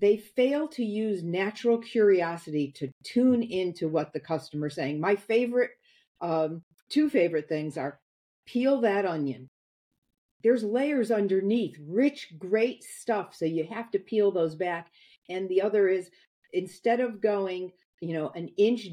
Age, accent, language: 50-69, American, English